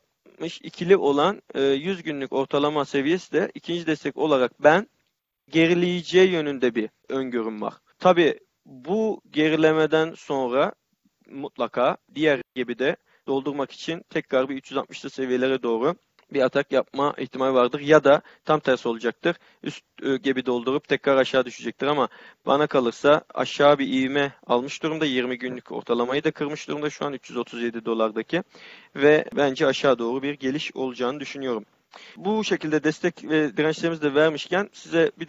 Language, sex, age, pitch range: Turkish, male, 40-59, 125-155 Hz